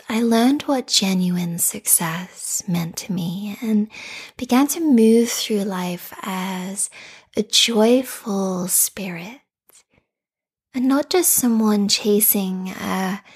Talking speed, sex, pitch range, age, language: 110 wpm, female, 190-255 Hz, 20-39, English